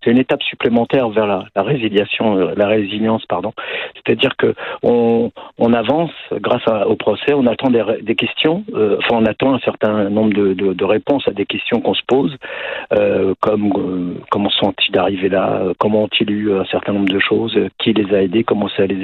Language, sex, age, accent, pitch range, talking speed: French, male, 50-69, French, 95-120 Hz, 205 wpm